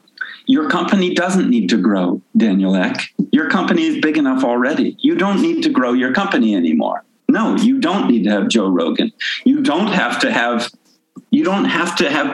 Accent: American